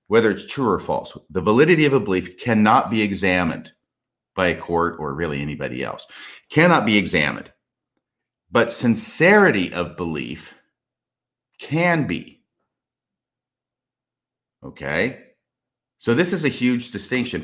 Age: 50-69